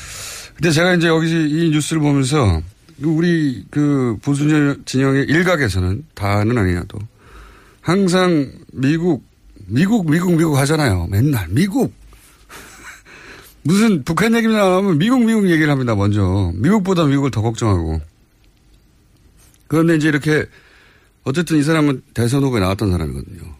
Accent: native